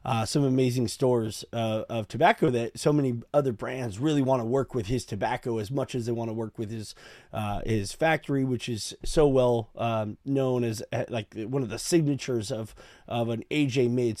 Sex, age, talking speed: male, 30-49, 205 wpm